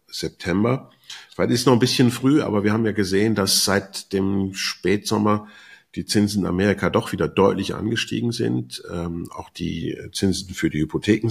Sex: male